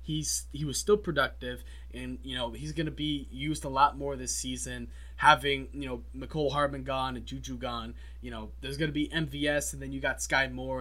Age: 20-39